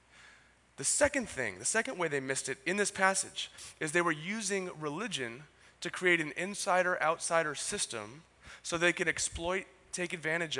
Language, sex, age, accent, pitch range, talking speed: English, male, 30-49, American, 135-185 Hz, 160 wpm